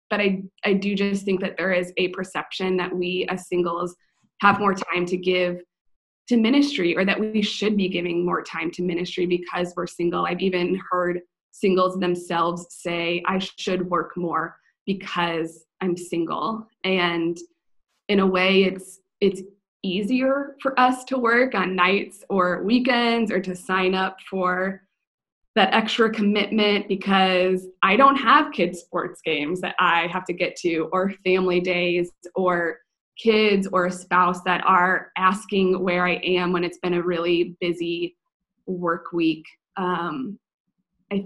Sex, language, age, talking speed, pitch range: female, English, 20-39, 155 wpm, 175-200 Hz